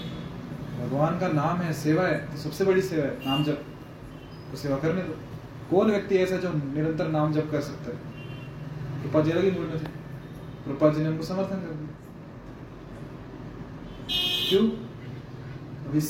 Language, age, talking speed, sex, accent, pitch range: Hindi, 20-39, 145 wpm, male, native, 140-165 Hz